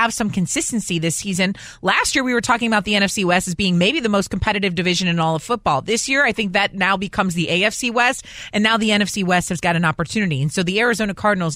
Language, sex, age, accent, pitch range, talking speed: English, female, 30-49, American, 160-200 Hz, 255 wpm